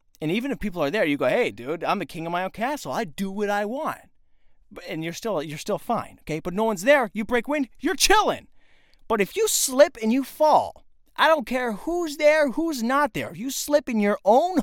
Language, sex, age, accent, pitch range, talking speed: English, male, 30-49, American, 160-255 Hz, 240 wpm